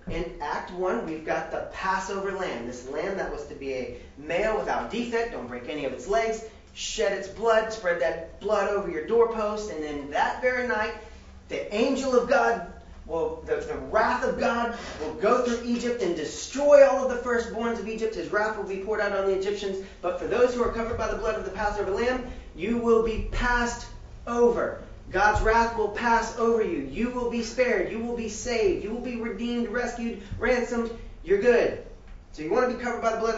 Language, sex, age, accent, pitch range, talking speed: English, male, 30-49, American, 215-250 Hz, 210 wpm